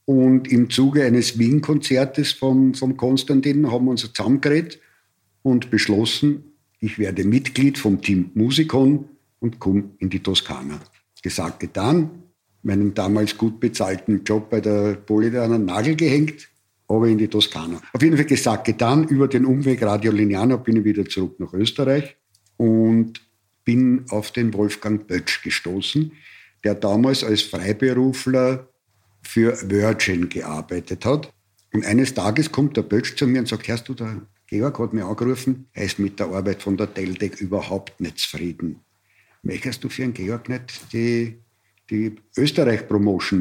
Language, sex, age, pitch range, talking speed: German, male, 60-79, 105-130 Hz, 150 wpm